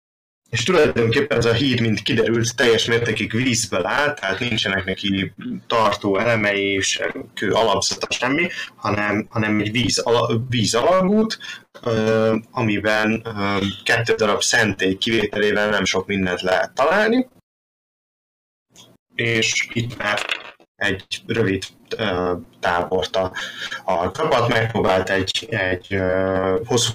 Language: Hungarian